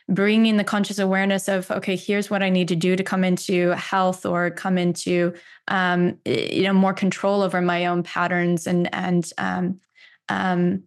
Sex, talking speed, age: female, 175 wpm, 20-39